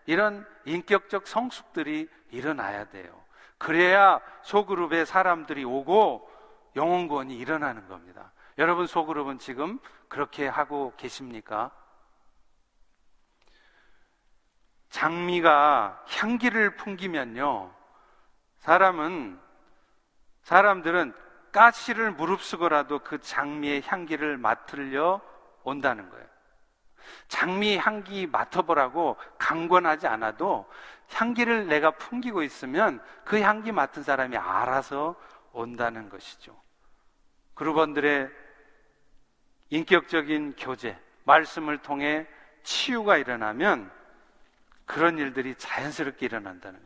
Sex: male